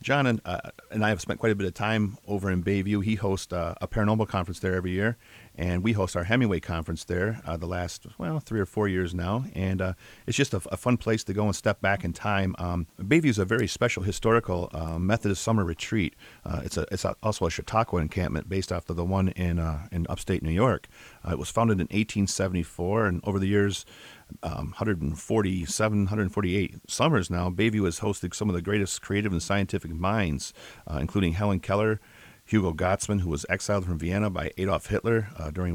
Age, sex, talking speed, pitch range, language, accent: 40-59, male, 215 wpm, 90-110 Hz, English, American